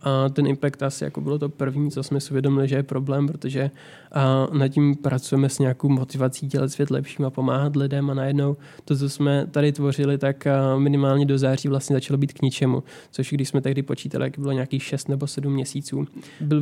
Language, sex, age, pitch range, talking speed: Czech, male, 20-39, 135-145 Hz, 205 wpm